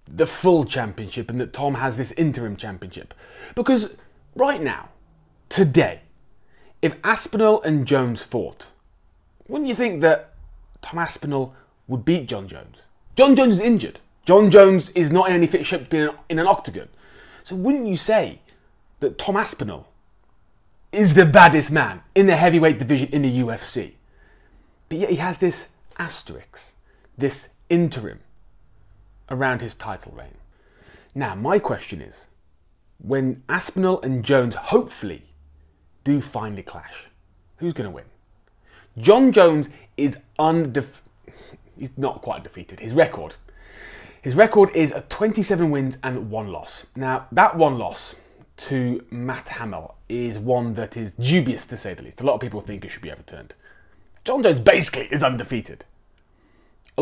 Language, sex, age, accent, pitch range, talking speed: English, male, 30-49, British, 110-175 Hz, 145 wpm